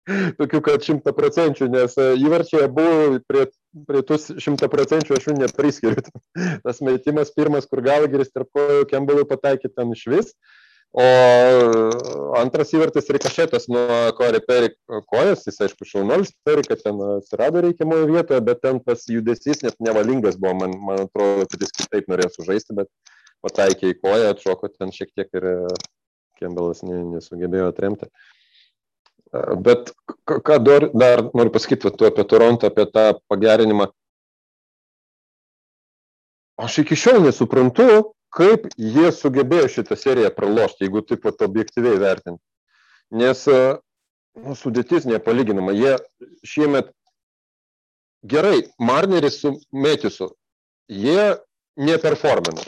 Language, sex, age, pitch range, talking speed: English, male, 20-39, 110-155 Hz, 120 wpm